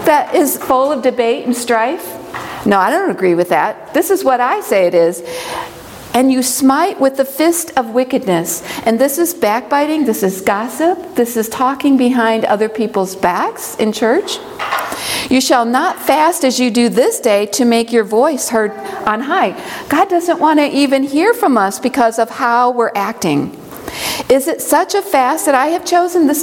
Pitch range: 220-315 Hz